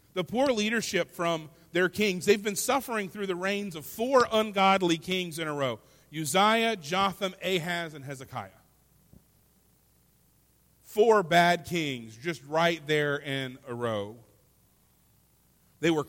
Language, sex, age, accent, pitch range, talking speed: English, male, 40-59, American, 140-190 Hz, 130 wpm